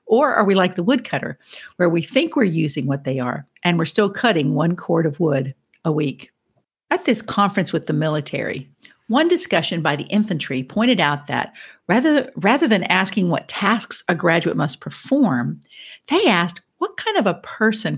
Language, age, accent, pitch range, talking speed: English, 50-69, American, 155-225 Hz, 185 wpm